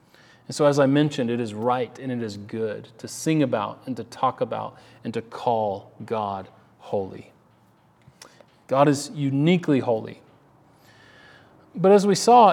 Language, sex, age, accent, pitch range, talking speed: English, male, 30-49, American, 125-160 Hz, 155 wpm